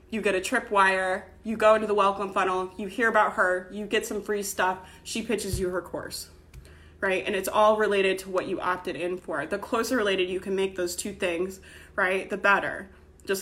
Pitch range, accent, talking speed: 185-220 Hz, American, 215 wpm